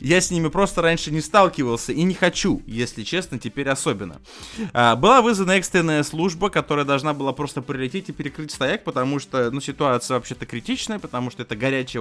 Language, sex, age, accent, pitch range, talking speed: Russian, male, 20-39, native, 125-175 Hz, 185 wpm